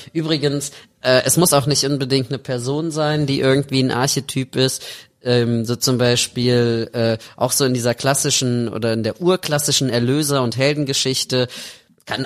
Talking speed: 160 wpm